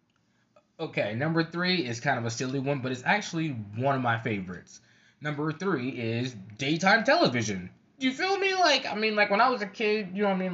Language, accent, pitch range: English, American, 120-160 Hz